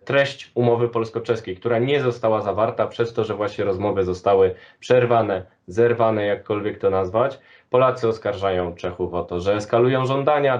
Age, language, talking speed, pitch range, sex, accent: 20-39, Polish, 145 wpm, 100-120 Hz, male, native